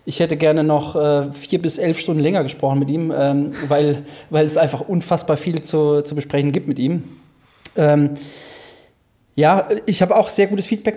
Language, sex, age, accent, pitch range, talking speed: German, male, 20-39, German, 145-165 Hz, 185 wpm